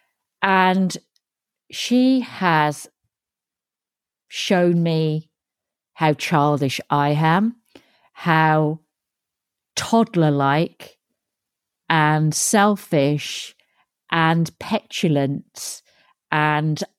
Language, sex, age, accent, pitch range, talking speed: English, female, 50-69, British, 140-175 Hz, 60 wpm